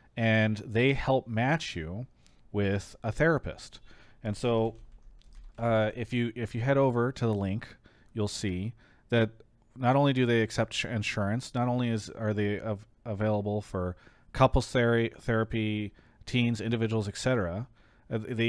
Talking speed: 145 wpm